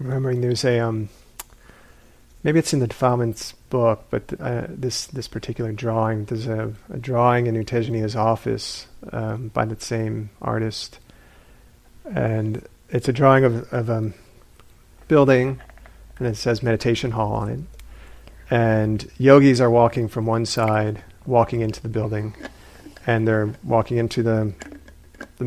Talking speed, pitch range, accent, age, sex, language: 145 wpm, 110-125 Hz, American, 40-59, male, English